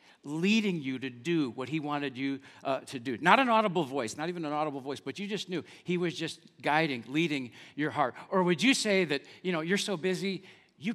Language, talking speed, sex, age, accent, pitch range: English, 230 wpm, male, 50-69, American, 140-185 Hz